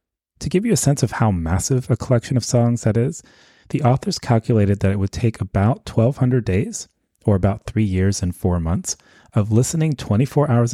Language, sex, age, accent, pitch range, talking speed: English, male, 30-49, American, 90-120 Hz, 195 wpm